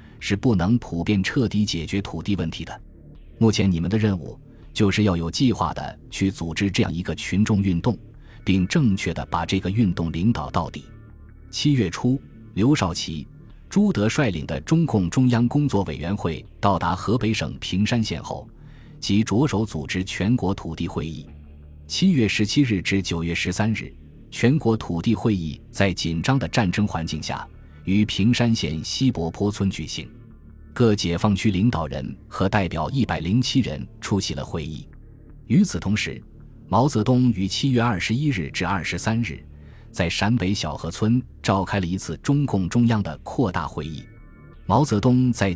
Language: Chinese